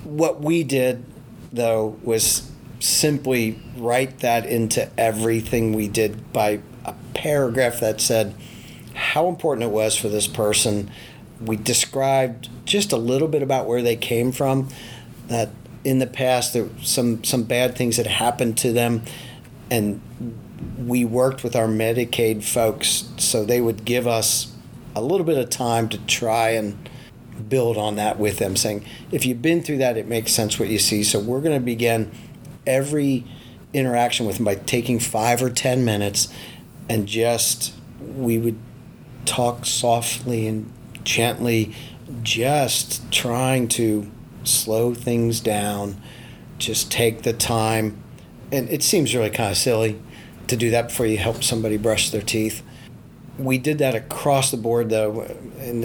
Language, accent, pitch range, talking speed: English, American, 110-125 Hz, 155 wpm